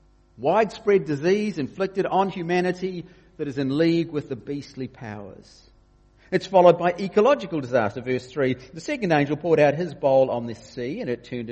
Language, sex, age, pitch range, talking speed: English, male, 50-69, 110-145 Hz, 170 wpm